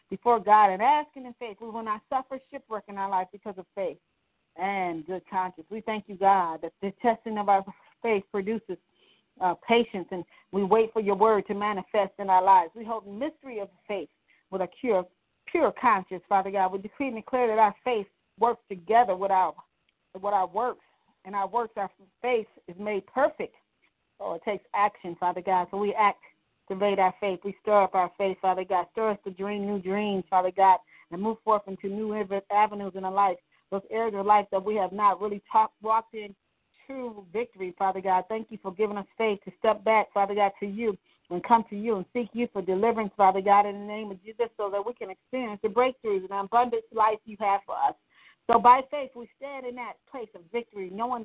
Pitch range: 195-225 Hz